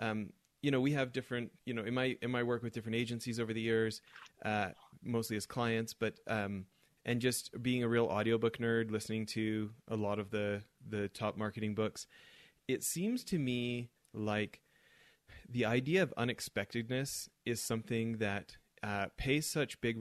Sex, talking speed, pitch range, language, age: male, 175 wpm, 105-125 Hz, English, 30-49